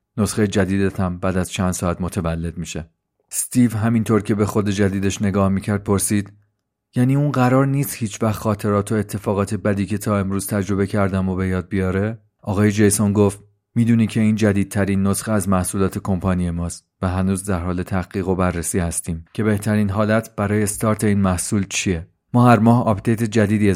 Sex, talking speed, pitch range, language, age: male, 175 wpm, 95-110 Hz, Persian, 40-59